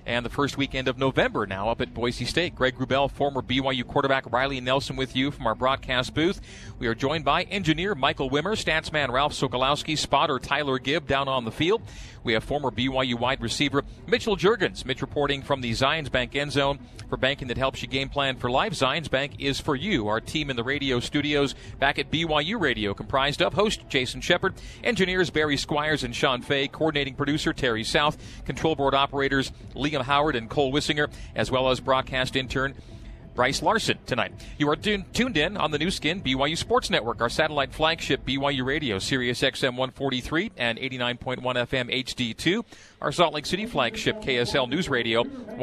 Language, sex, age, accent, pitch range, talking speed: English, male, 40-59, American, 130-155 Hz, 190 wpm